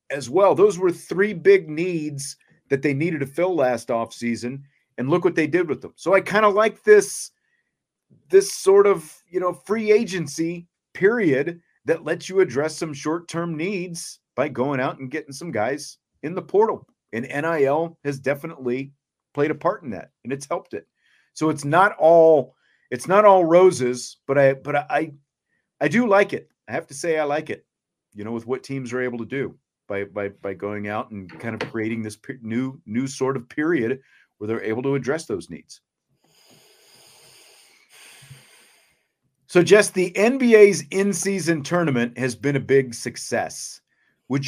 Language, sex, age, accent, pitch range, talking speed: English, male, 40-59, American, 125-175 Hz, 180 wpm